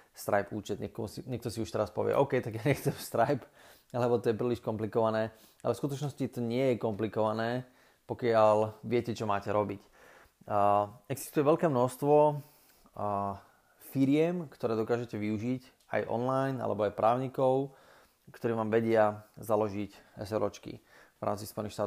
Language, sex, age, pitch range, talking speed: Slovak, male, 30-49, 105-125 Hz, 145 wpm